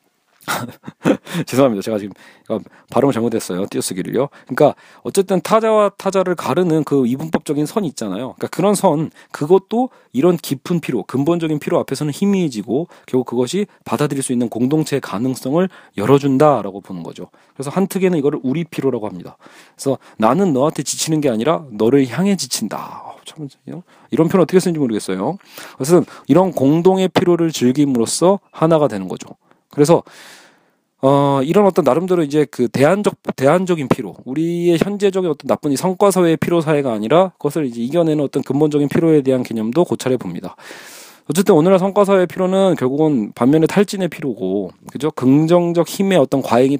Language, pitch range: Korean, 130-180 Hz